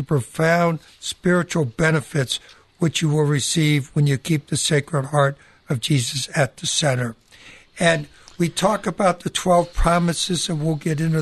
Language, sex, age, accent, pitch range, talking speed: English, male, 60-79, American, 145-170 Hz, 160 wpm